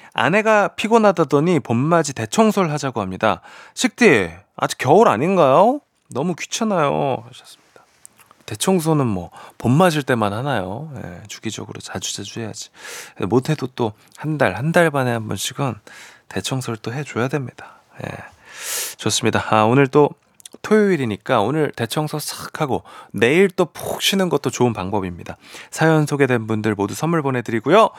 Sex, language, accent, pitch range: male, Korean, native, 105-170 Hz